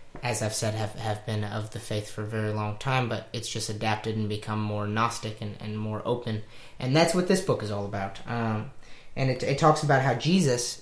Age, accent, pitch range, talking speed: 20-39, American, 110-130 Hz, 235 wpm